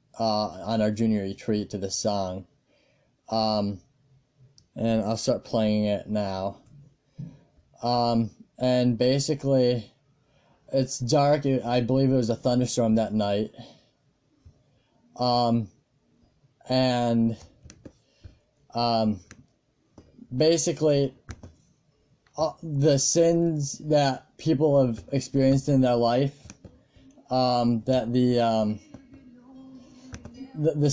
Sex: male